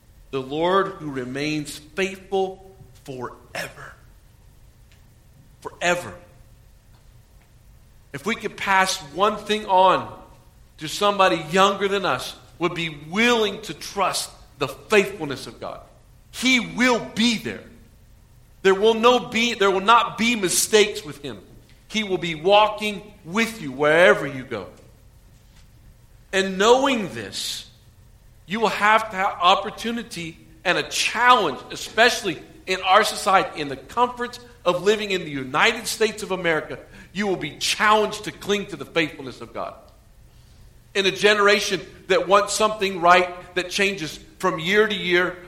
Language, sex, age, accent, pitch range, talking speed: English, male, 50-69, American, 130-205 Hz, 130 wpm